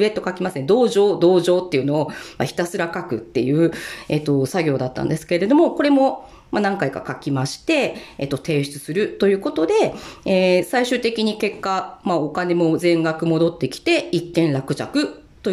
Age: 40-59